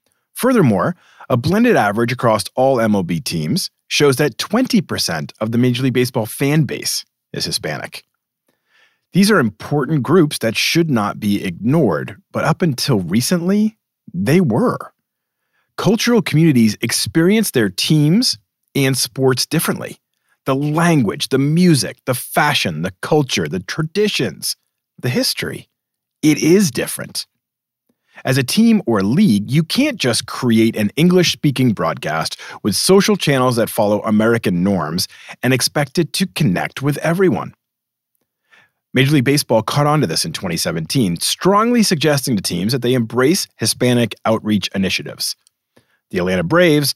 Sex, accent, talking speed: male, American, 135 wpm